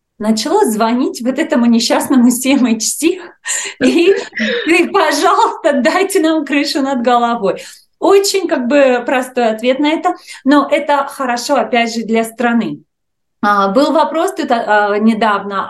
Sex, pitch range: female, 220-285 Hz